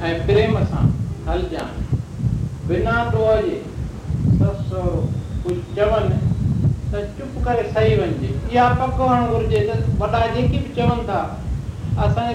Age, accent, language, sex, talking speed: 60-79, native, Hindi, male, 120 wpm